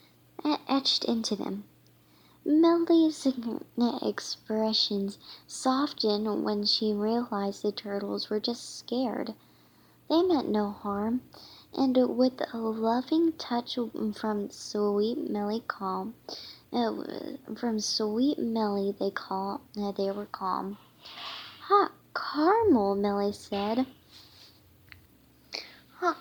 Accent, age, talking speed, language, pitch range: American, 10-29, 95 wpm, English, 205-265 Hz